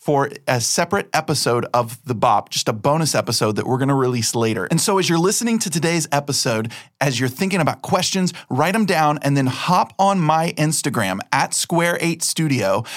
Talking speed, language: 190 wpm, English